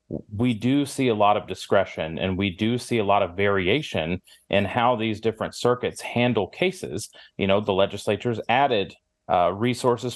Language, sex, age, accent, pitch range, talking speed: English, male, 30-49, American, 105-130 Hz, 170 wpm